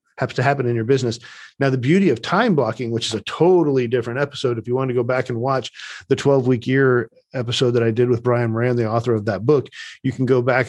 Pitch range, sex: 120-155 Hz, male